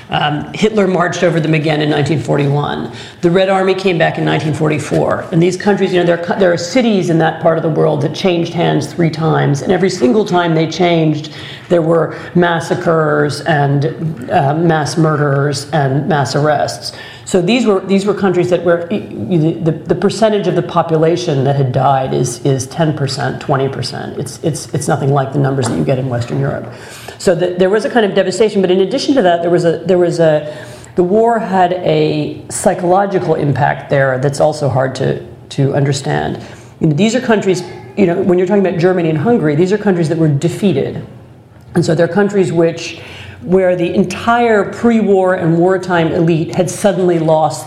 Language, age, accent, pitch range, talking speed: English, 40-59, American, 145-185 Hz, 195 wpm